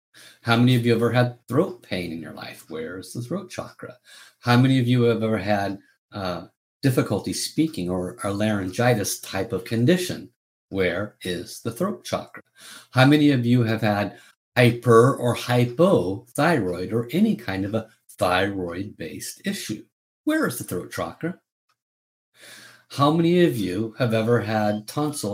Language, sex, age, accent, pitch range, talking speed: English, male, 50-69, American, 105-135 Hz, 160 wpm